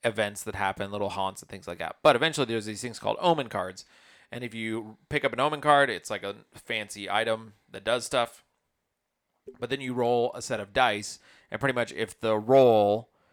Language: English